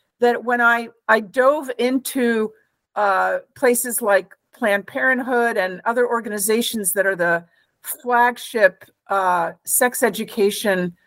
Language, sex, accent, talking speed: English, female, American, 115 wpm